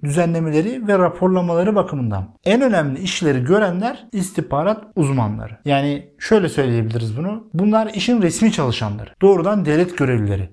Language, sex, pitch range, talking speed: Turkish, male, 130-185 Hz, 120 wpm